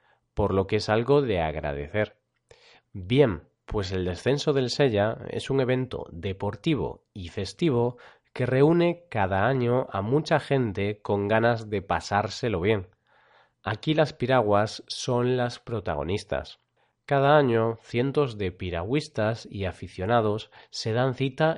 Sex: male